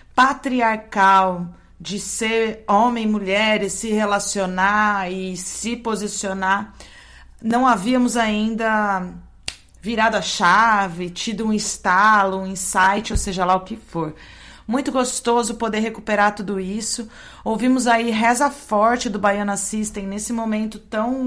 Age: 30-49